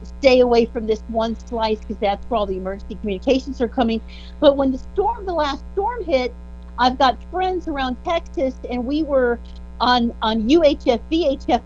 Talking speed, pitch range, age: 180 wpm, 220-270 Hz, 50-69